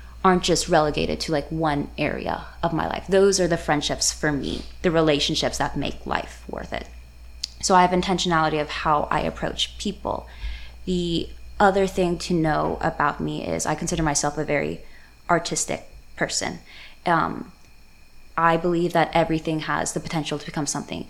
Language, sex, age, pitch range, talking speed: English, female, 20-39, 150-175 Hz, 165 wpm